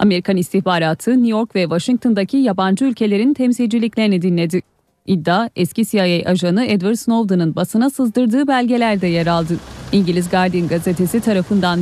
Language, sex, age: Turkish, female, 30-49